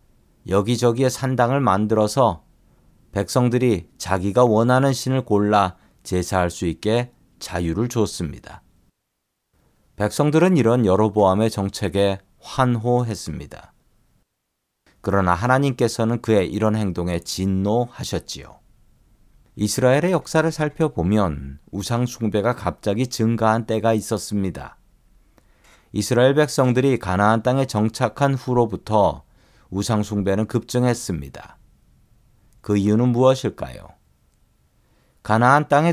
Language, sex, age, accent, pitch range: Korean, male, 40-59, native, 95-125 Hz